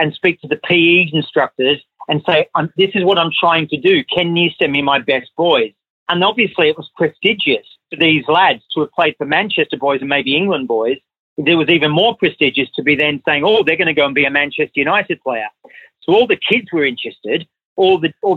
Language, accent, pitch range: English, Australian, 145-170 Hz